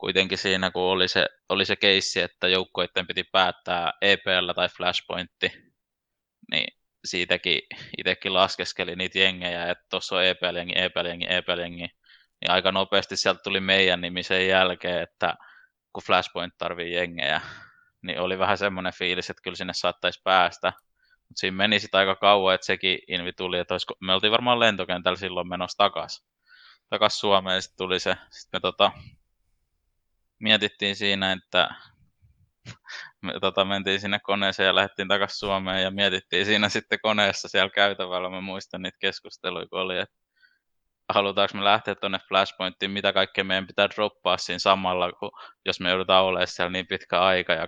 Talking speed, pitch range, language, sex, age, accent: 155 wpm, 90-100 Hz, Finnish, male, 20-39, native